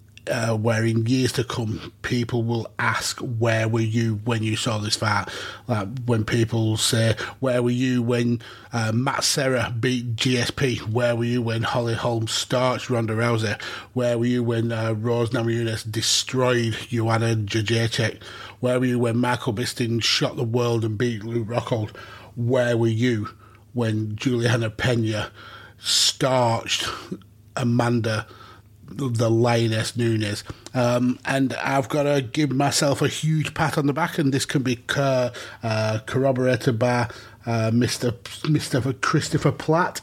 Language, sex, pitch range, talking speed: English, male, 115-130 Hz, 150 wpm